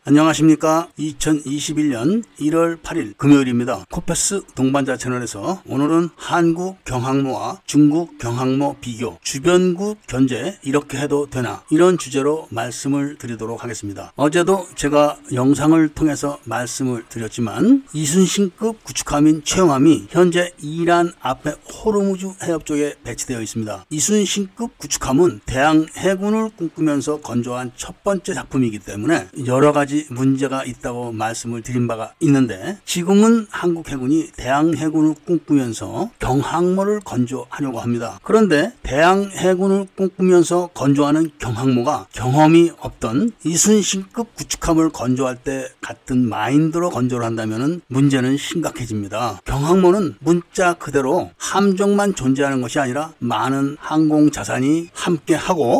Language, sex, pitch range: Korean, male, 130-175 Hz